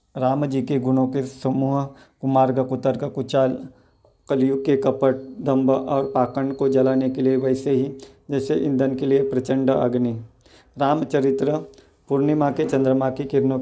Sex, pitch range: male, 130-135 Hz